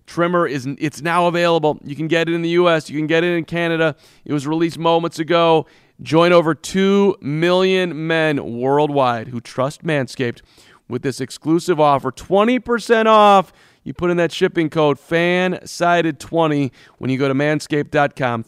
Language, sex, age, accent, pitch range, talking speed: English, male, 40-59, American, 130-160 Hz, 165 wpm